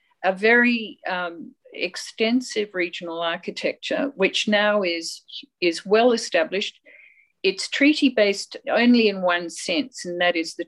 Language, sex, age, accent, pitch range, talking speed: English, female, 50-69, Australian, 175-275 Hz, 130 wpm